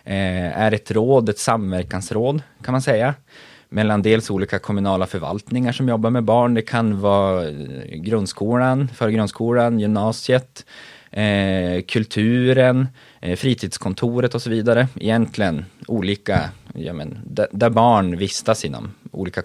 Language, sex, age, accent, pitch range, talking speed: Swedish, male, 20-39, native, 100-115 Hz, 110 wpm